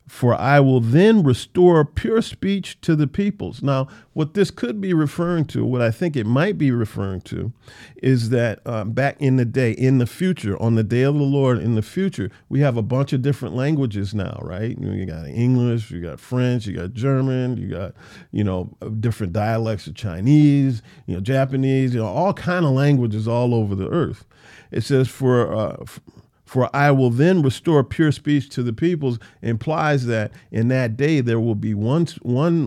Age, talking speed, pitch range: 50-69, 200 wpm, 115-145 Hz